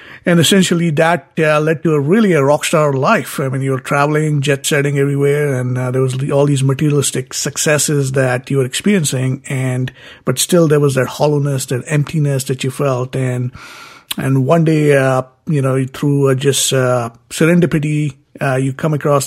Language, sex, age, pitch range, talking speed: English, male, 50-69, 130-145 Hz, 185 wpm